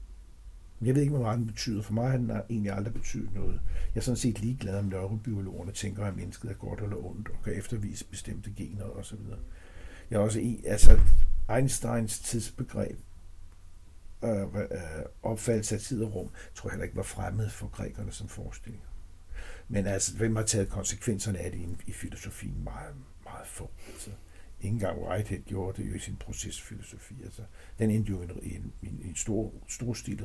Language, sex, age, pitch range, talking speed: Danish, male, 60-79, 95-110 Hz, 185 wpm